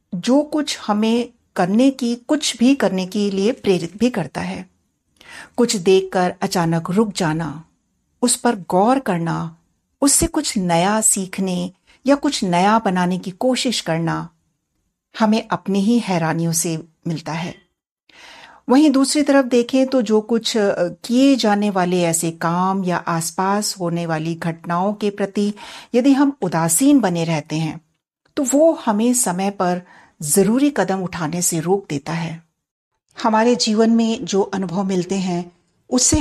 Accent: native